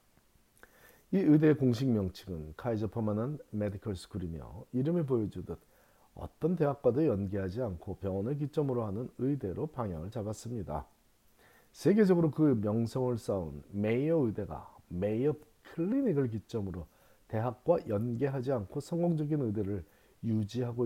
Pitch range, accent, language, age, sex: 100-140 Hz, native, Korean, 40-59, male